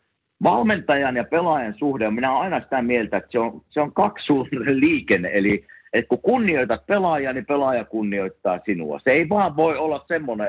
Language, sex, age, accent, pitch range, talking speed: Finnish, male, 50-69, native, 105-155 Hz, 175 wpm